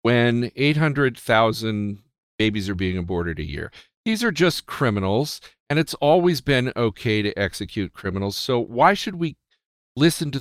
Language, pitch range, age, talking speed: English, 105-150 Hz, 50-69, 150 wpm